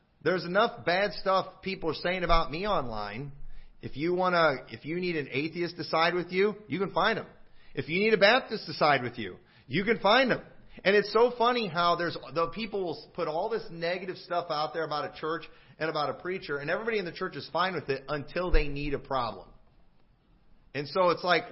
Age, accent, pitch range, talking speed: 40-59, American, 140-180 Hz, 225 wpm